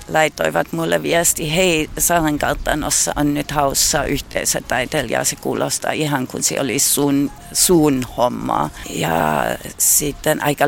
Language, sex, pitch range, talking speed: Finnish, female, 145-165 Hz, 120 wpm